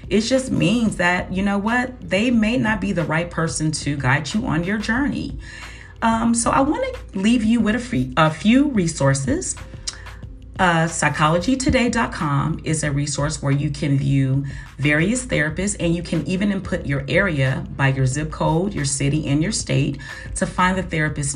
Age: 40-59